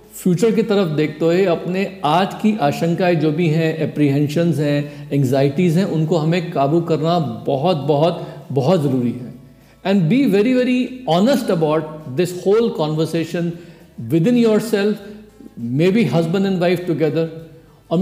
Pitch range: 150-185 Hz